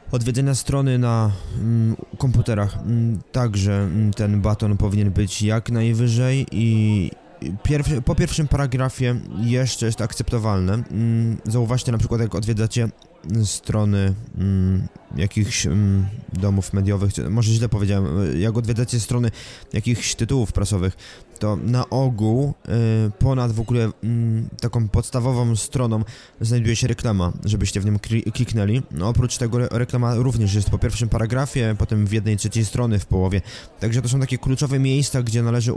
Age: 20-39